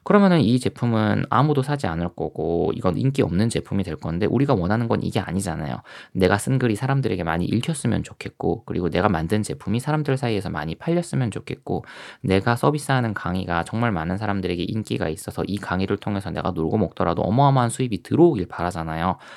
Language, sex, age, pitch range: Korean, male, 20-39, 90-135 Hz